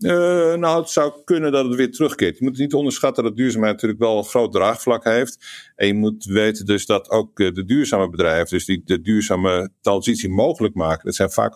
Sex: male